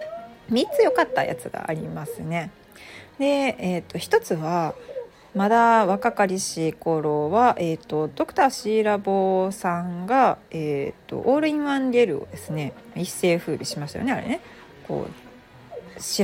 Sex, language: female, Japanese